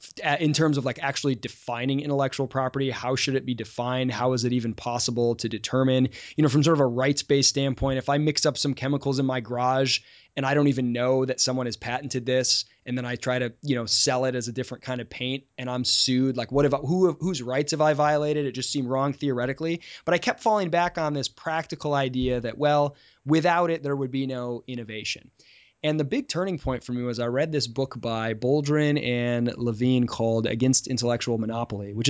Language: English